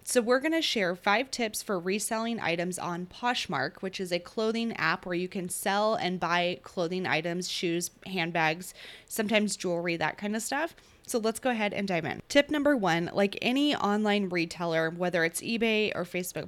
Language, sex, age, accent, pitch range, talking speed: English, female, 20-39, American, 180-225 Hz, 190 wpm